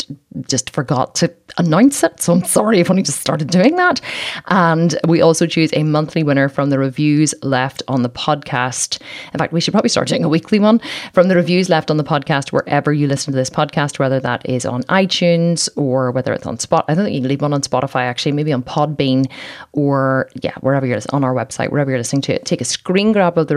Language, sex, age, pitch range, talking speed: English, female, 30-49, 130-170 Hz, 235 wpm